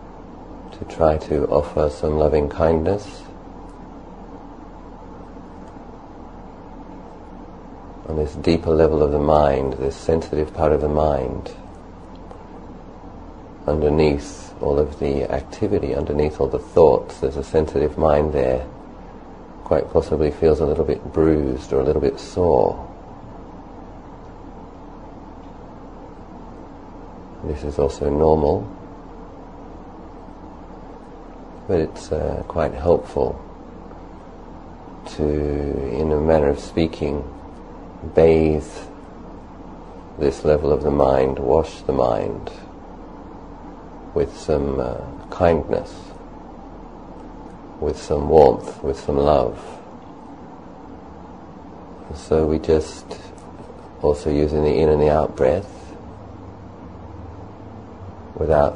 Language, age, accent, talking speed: English, 40-59, British, 90 wpm